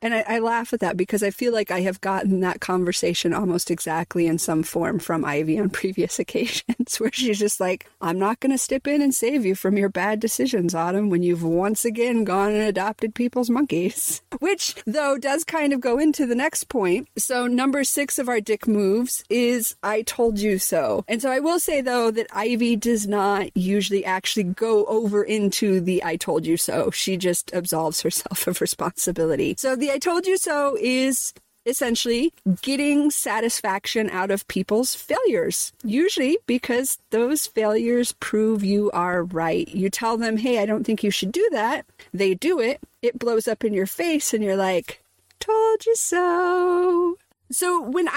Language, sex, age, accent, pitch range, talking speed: English, female, 40-59, American, 195-275 Hz, 185 wpm